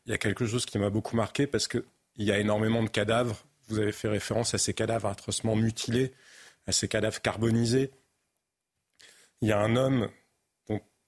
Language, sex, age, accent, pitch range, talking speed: French, male, 30-49, French, 105-125 Hz, 190 wpm